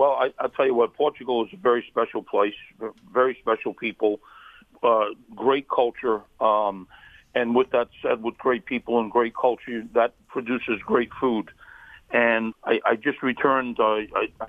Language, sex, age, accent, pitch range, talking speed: English, male, 50-69, American, 115-130 Hz, 155 wpm